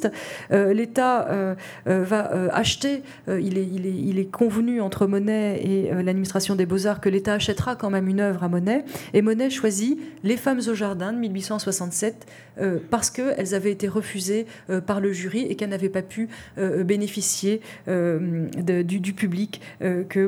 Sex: female